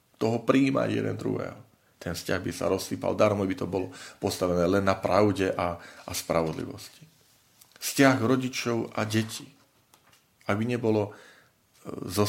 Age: 40-59